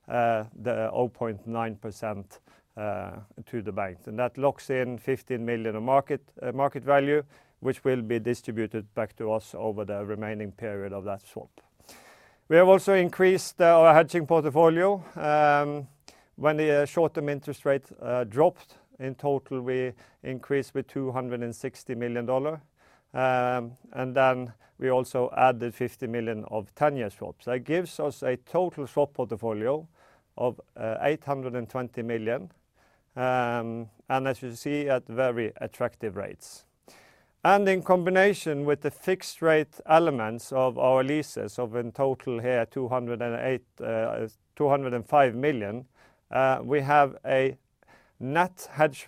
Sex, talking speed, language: male, 135 wpm, English